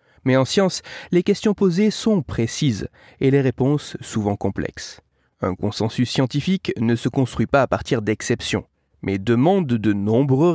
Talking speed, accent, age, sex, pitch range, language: 155 wpm, French, 30-49, male, 115-165 Hz, French